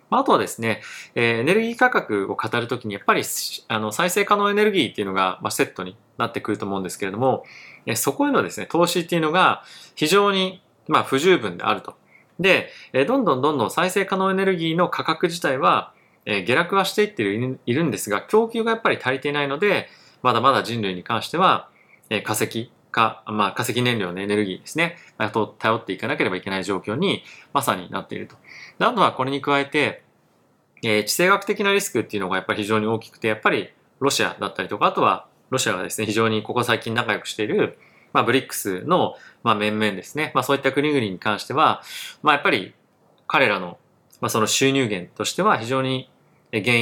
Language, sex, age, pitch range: Japanese, male, 20-39, 105-165 Hz